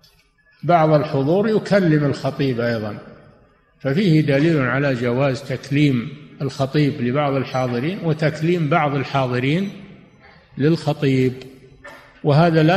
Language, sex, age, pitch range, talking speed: Arabic, male, 50-69, 140-170 Hz, 90 wpm